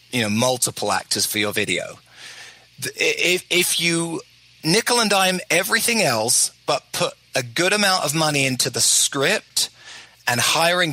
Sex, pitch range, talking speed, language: male, 125-170 Hz, 150 wpm, English